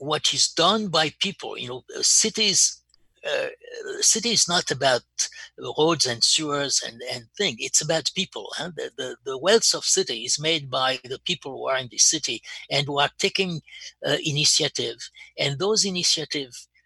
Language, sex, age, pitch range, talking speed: English, male, 60-79, 135-185 Hz, 170 wpm